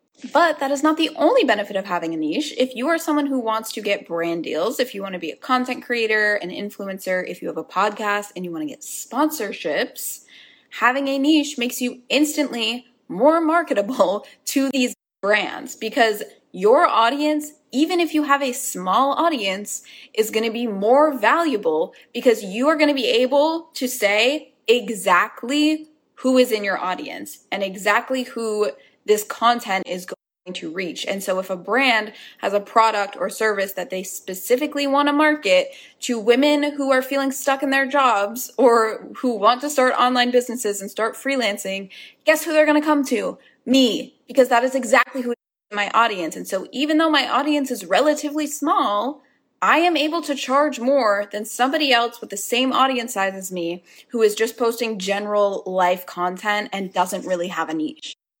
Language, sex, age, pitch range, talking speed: English, female, 20-39, 205-285 Hz, 185 wpm